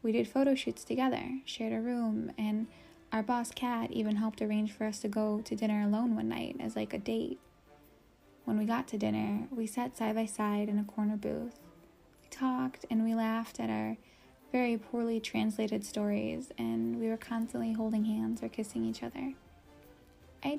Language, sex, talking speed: English, female, 185 wpm